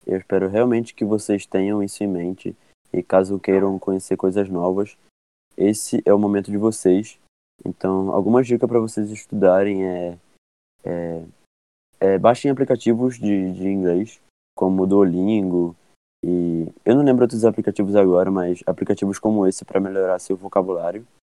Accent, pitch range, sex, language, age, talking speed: Brazilian, 95-105 Hz, male, Portuguese, 20-39, 150 wpm